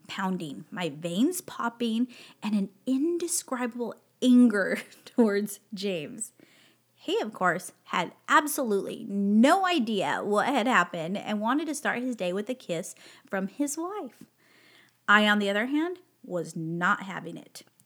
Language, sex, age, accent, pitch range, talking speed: English, female, 30-49, American, 210-290 Hz, 140 wpm